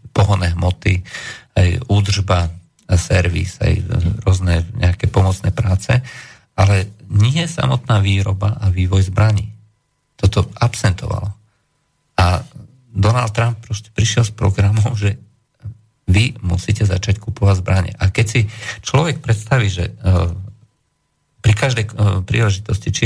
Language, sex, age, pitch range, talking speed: Slovak, male, 40-59, 95-115 Hz, 110 wpm